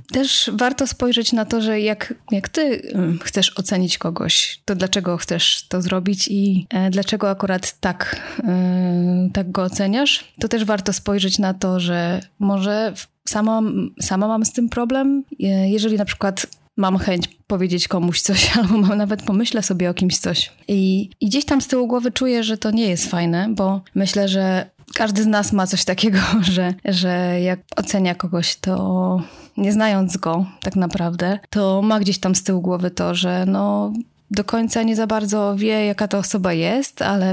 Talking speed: 170 wpm